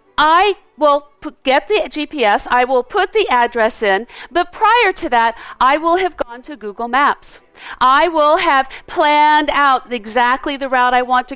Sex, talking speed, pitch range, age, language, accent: female, 175 wpm, 235-315 Hz, 50-69, English, American